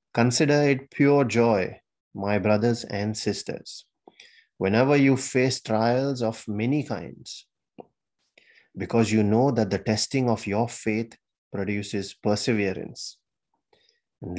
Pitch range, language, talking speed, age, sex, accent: 95-115 Hz, English, 115 wpm, 30-49, male, Indian